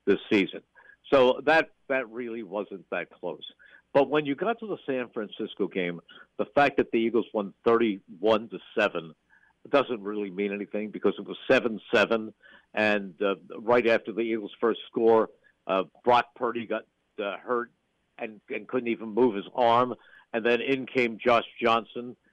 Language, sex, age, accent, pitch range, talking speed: English, male, 60-79, American, 110-140 Hz, 165 wpm